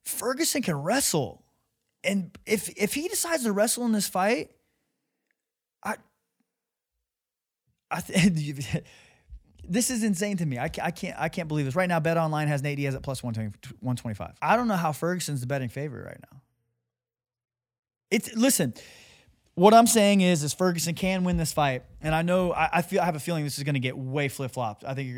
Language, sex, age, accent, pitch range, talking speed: English, male, 20-39, American, 130-175 Hz, 200 wpm